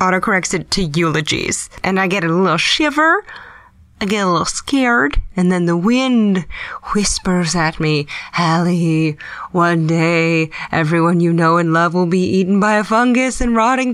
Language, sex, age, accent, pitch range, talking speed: English, female, 20-39, American, 160-205 Hz, 165 wpm